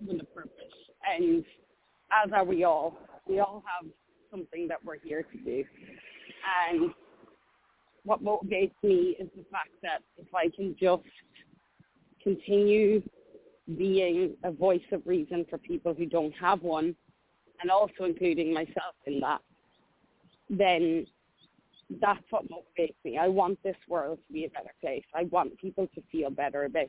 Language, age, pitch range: English, 30-49, 170-210 Hz